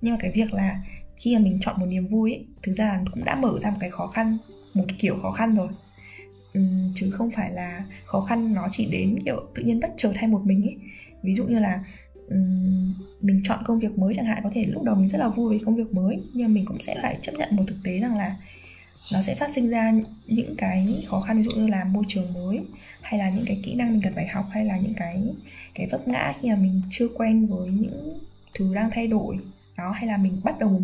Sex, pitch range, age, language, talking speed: female, 190-225 Hz, 10-29, Vietnamese, 255 wpm